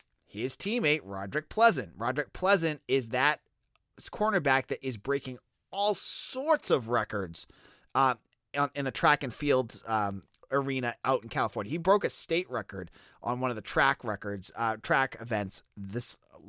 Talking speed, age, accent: 155 wpm, 30-49, American